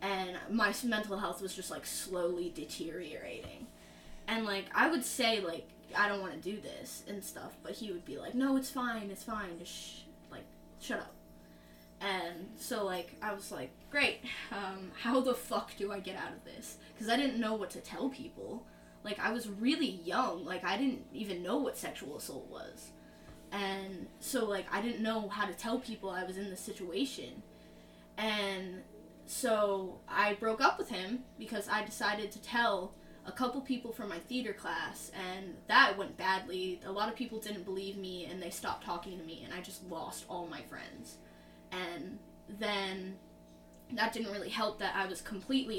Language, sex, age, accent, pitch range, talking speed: English, female, 10-29, American, 190-225 Hz, 190 wpm